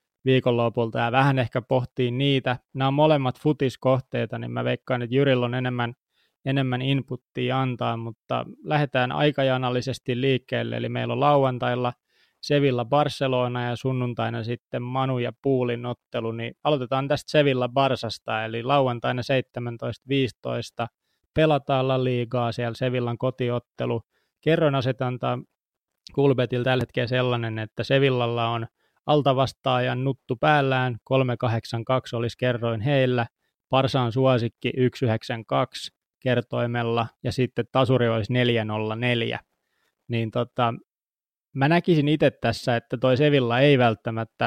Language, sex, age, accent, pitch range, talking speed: Finnish, male, 20-39, native, 120-135 Hz, 115 wpm